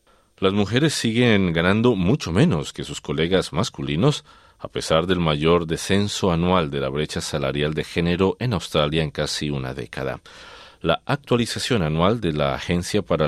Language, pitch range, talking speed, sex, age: Spanish, 80-105 Hz, 160 wpm, male, 40-59